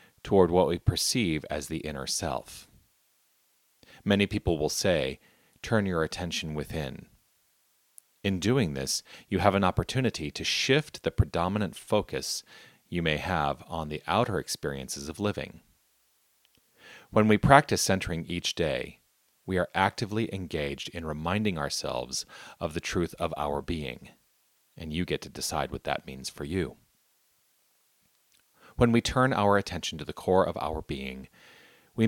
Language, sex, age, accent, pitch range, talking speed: English, male, 40-59, American, 75-105 Hz, 145 wpm